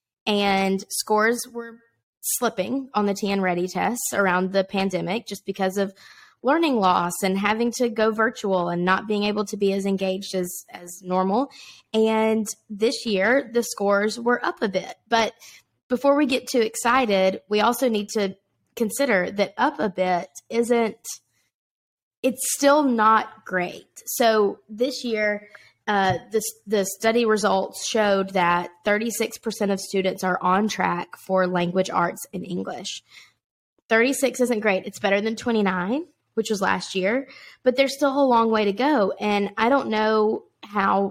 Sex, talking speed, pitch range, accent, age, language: female, 160 wpm, 195-235 Hz, American, 20-39, English